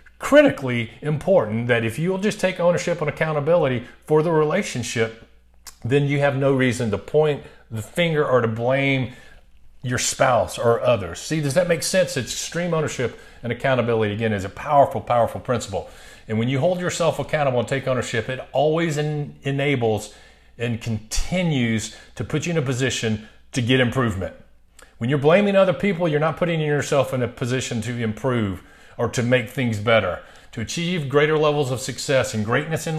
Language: English